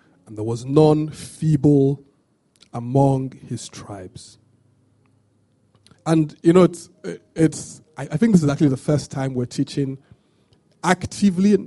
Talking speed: 120 wpm